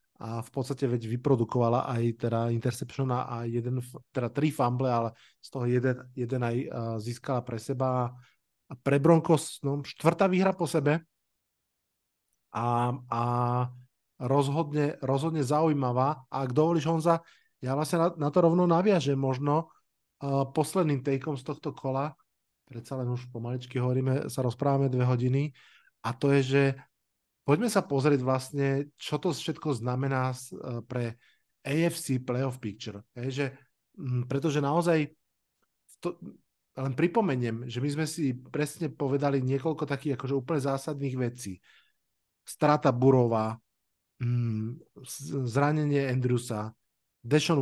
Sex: male